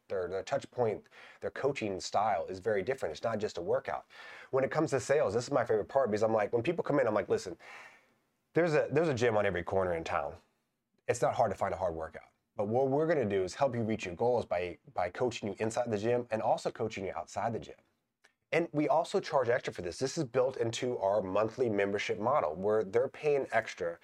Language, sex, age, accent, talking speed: English, male, 30-49, American, 240 wpm